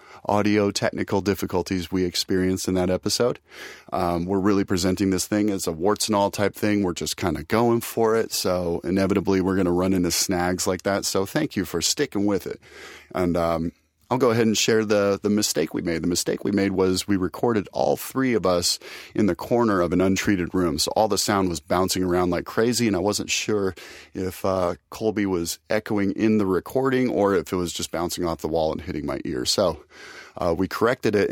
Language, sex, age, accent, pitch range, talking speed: English, male, 30-49, American, 90-105 Hz, 220 wpm